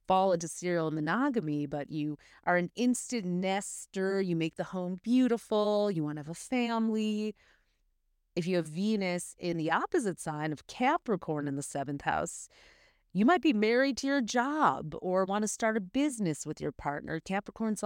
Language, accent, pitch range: English, American, 160-230 Hz